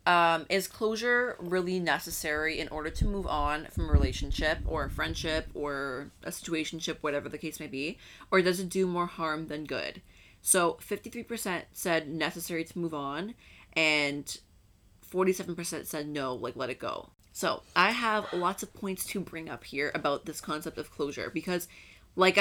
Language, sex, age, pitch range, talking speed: English, female, 20-39, 150-185 Hz, 170 wpm